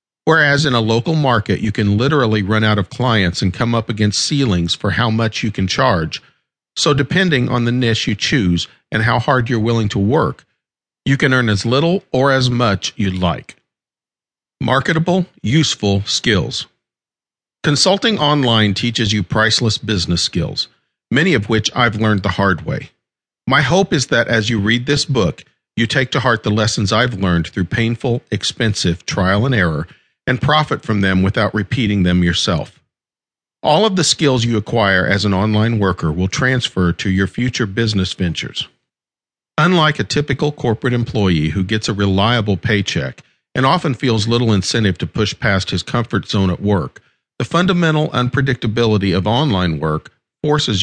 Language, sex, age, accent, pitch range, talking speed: English, male, 50-69, American, 100-125 Hz, 170 wpm